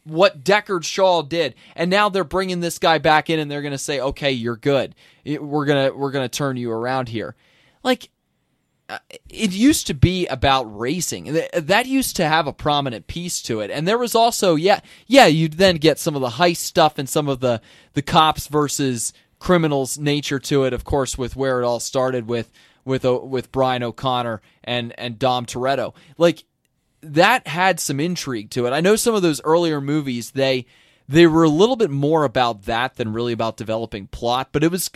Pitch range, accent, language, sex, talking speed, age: 120-165 Hz, American, English, male, 205 wpm, 20-39